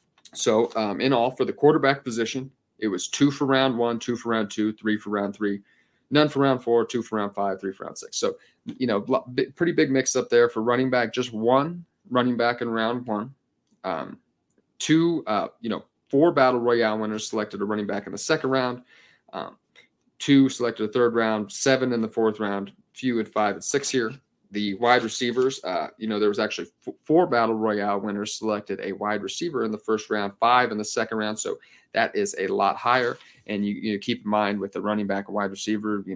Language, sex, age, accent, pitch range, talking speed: English, male, 30-49, American, 105-125 Hz, 220 wpm